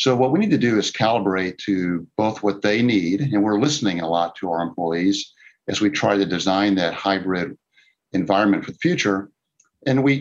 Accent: American